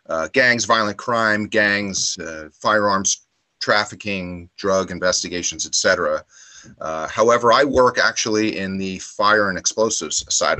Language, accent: English, American